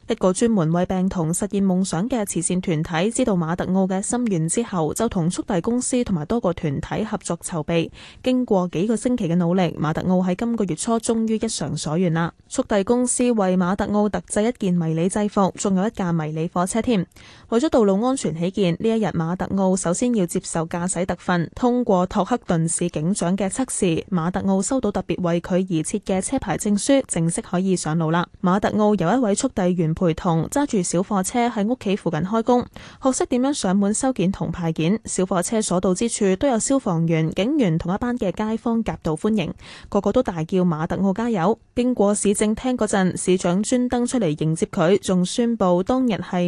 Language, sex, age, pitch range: Chinese, female, 10-29, 175-225 Hz